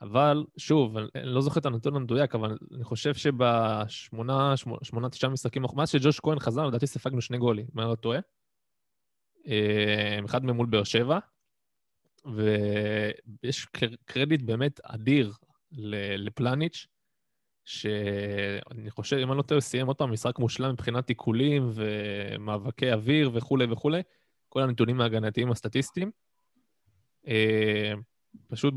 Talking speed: 75 wpm